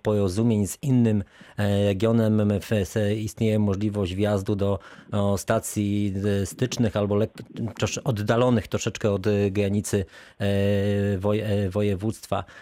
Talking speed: 75 wpm